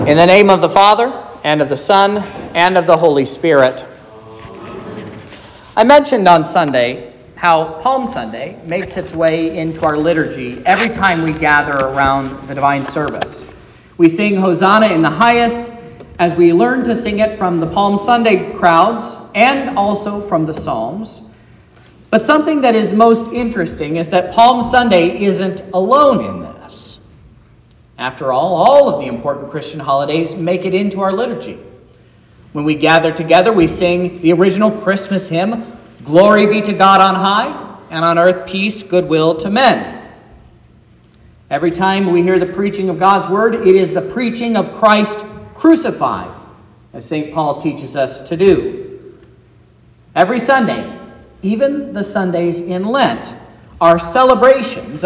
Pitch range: 160-215 Hz